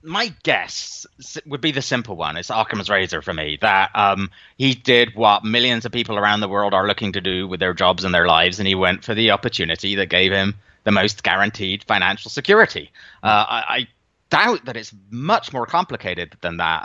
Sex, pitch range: male, 100-130 Hz